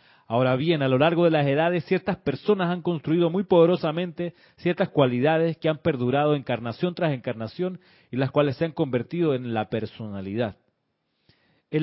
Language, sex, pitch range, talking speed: Spanish, male, 130-170 Hz, 160 wpm